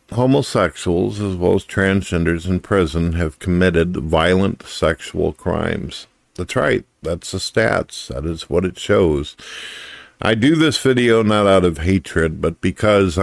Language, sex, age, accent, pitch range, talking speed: English, male, 50-69, American, 80-100 Hz, 145 wpm